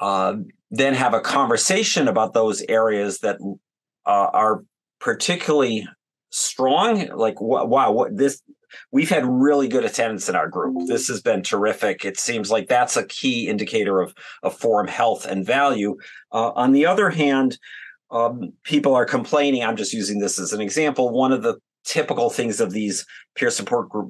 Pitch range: 110-155 Hz